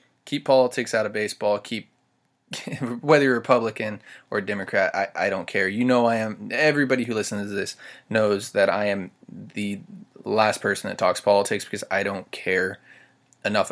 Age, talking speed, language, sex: 20-39, 170 wpm, English, male